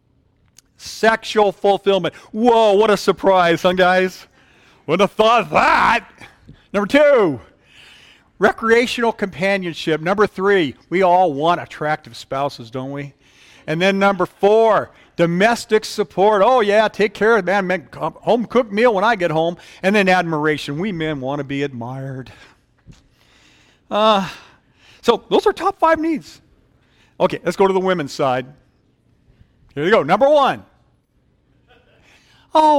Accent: American